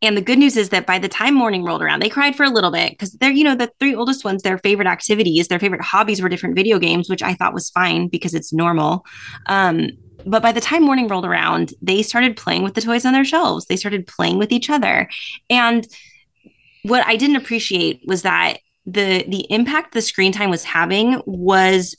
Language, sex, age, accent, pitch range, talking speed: English, female, 20-39, American, 185-230 Hz, 225 wpm